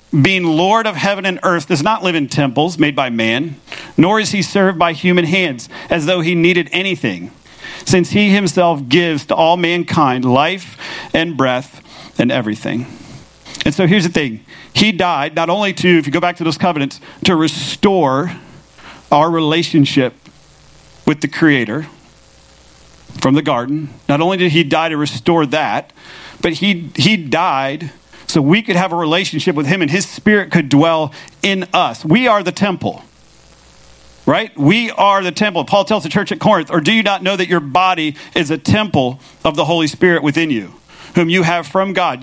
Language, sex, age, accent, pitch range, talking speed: English, male, 40-59, American, 140-180 Hz, 185 wpm